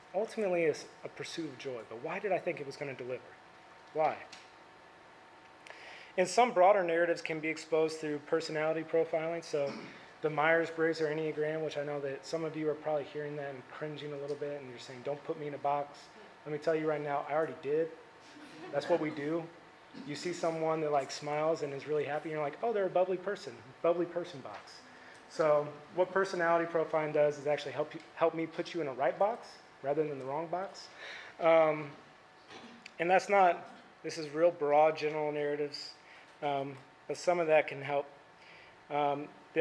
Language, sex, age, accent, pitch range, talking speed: English, male, 30-49, American, 140-165 Hz, 200 wpm